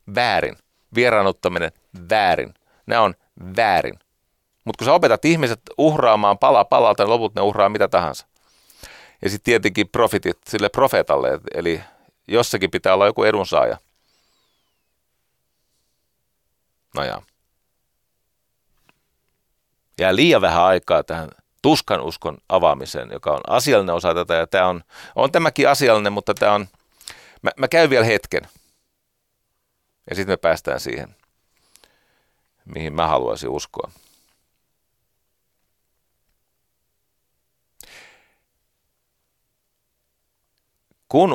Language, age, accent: Finnish, 40-59, native